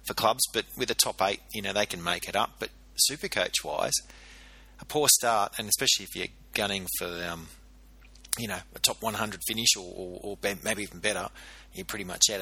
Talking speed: 215 wpm